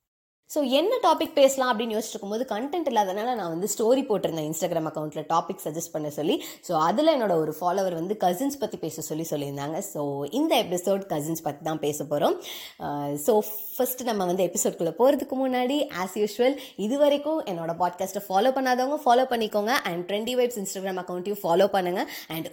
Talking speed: 160 wpm